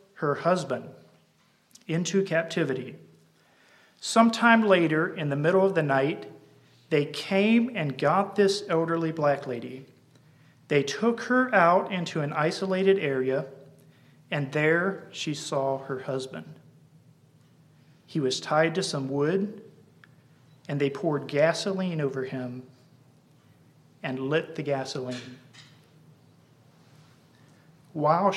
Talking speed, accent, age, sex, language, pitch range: 110 wpm, American, 40-59, male, English, 135-170 Hz